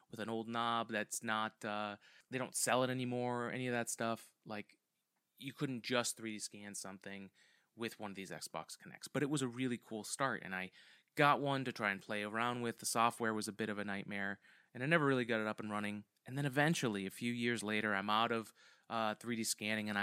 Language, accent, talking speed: English, American, 230 wpm